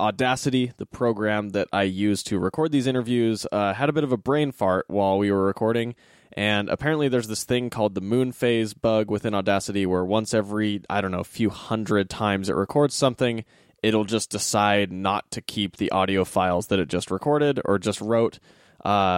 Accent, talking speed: American, 200 wpm